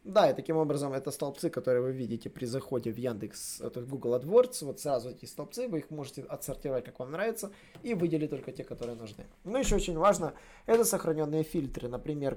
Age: 20-39